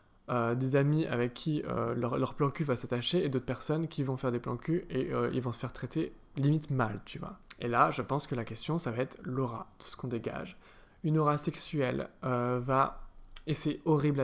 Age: 20-39